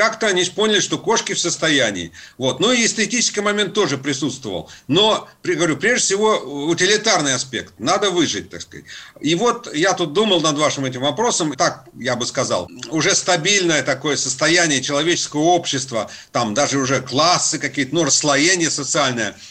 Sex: male